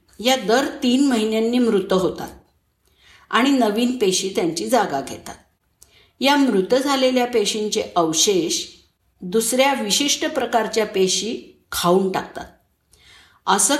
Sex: female